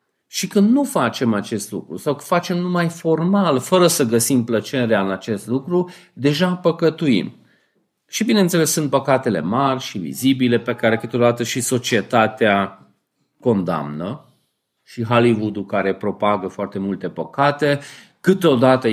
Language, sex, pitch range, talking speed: Romanian, male, 110-140 Hz, 130 wpm